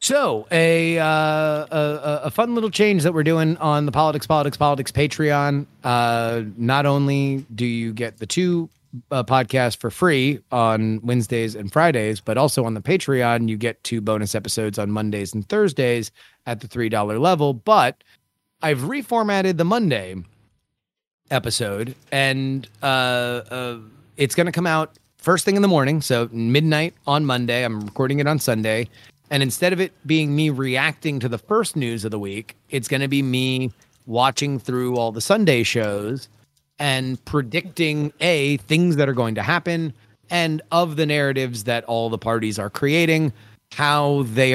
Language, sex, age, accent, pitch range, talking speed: English, male, 30-49, American, 115-155 Hz, 170 wpm